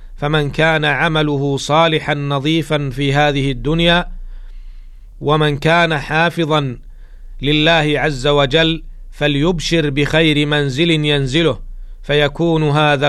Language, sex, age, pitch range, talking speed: Arabic, male, 40-59, 140-160 Hz, 90 wpm